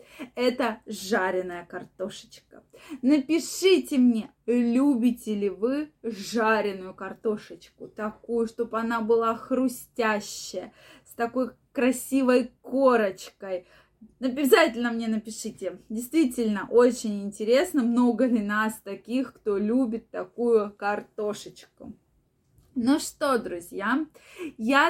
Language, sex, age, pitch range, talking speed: Russian, female, 20-39, 220-265 Hz, 90 wpm